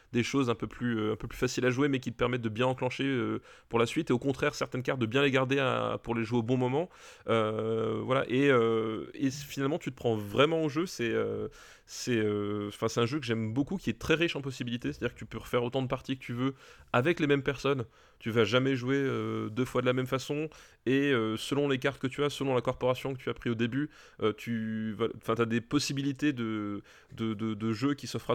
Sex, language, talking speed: male, French, 265 wpm